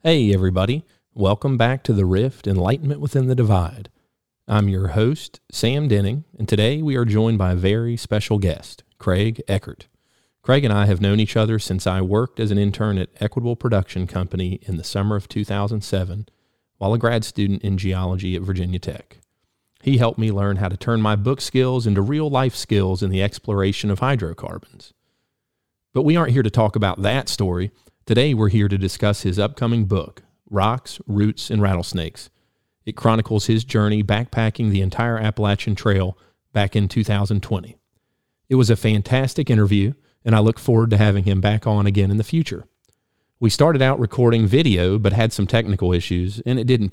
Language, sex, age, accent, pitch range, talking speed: English, male, 40-59, American, 100-120 Hz, 180 wpm